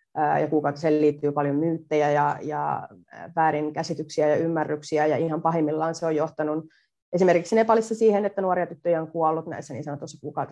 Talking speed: 155 wpm